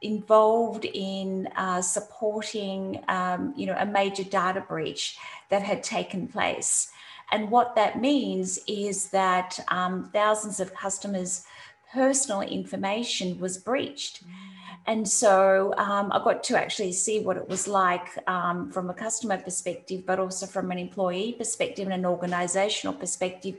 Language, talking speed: English, 135 wpm